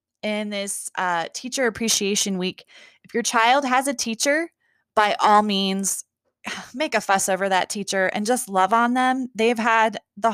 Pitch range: 175-240 Hz